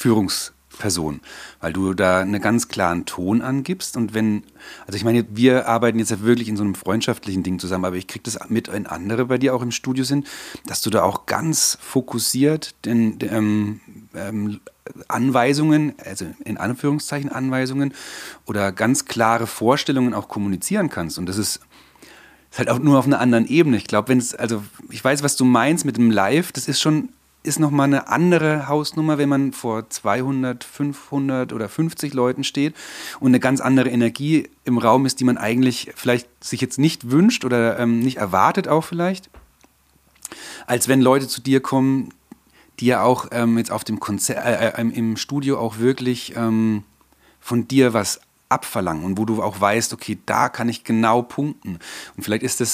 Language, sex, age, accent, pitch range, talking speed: German, male, 30-49, German, 110-135 Hz, 185 wpm